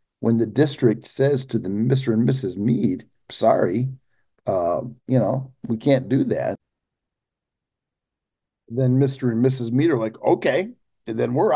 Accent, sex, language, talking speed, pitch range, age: American, male, English, 150 wpm, 110-130 Hz, 50-69